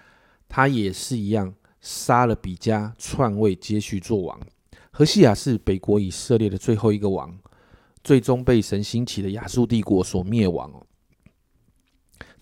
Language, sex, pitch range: Chinese, male, 100-130 Hz